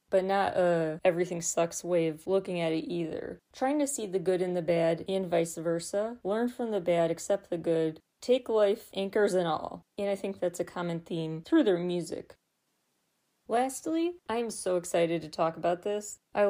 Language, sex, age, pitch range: English, female, 30-49, 170-205 Hz